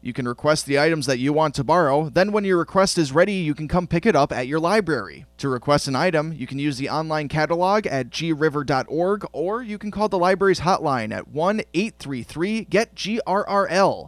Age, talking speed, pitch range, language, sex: 30-49, 195 wpm, 140-185 Hz, English, male